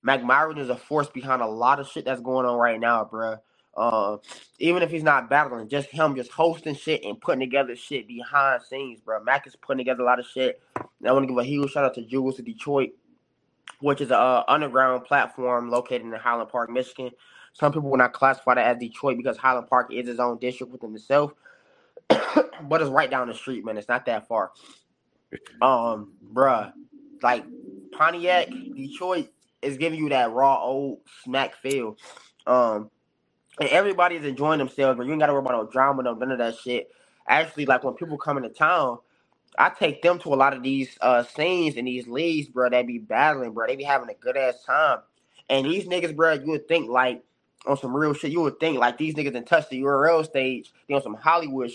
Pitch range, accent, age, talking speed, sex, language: 125-155 Hz, American, 20-39, 215 wpm, male, English